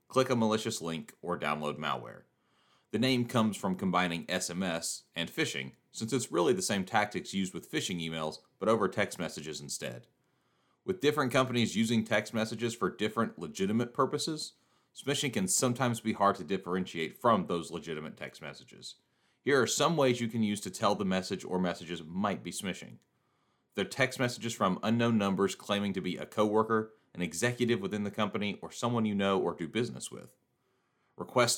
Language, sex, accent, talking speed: English, male, American, 175 wpm